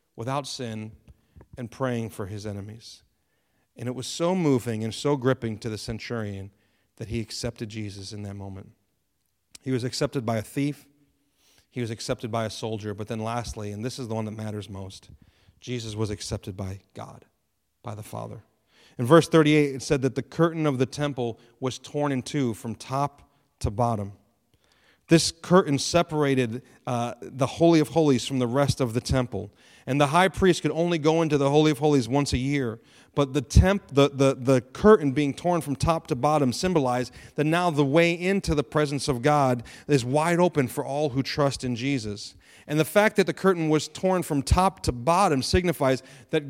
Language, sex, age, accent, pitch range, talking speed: English, male, 40-59, American, 120-155 Hz, 190 wpm